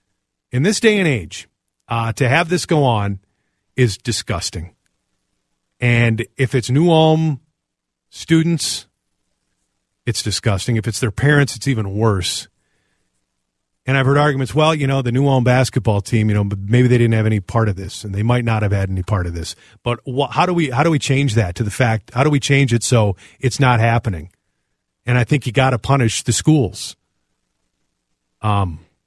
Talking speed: 190 wpm